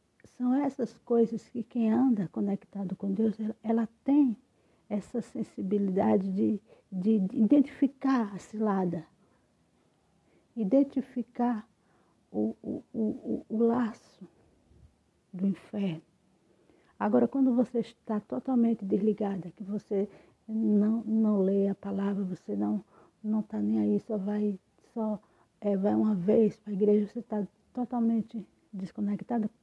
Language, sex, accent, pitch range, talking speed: Portuguese, female, Brazilian, 195-230 Hz, 125 wpm